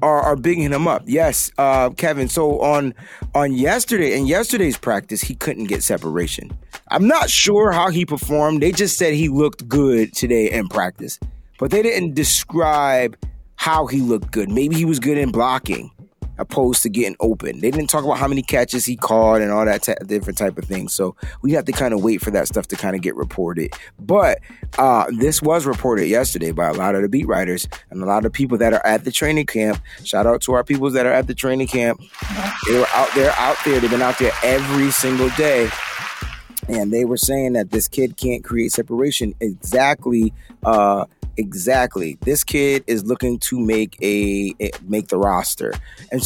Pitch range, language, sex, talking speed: 110-150 Hz, English, male, 200 wpm